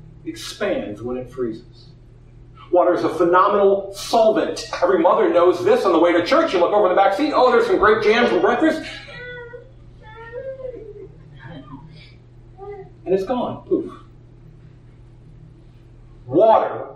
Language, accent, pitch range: English, American, 125-200 Hz